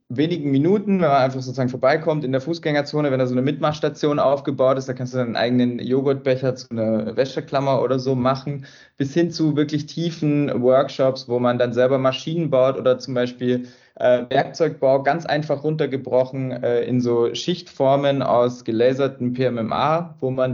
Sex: male